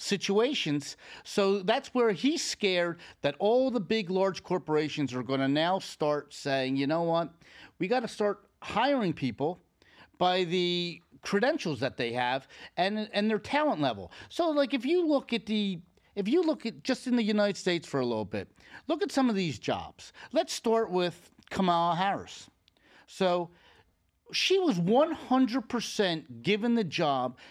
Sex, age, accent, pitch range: male, 40-59, American, 150-230 Hz